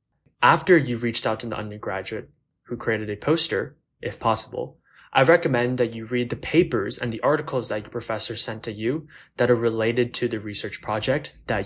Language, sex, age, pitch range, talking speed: English, male, 20-39, 110-135 Hz, 190 wpm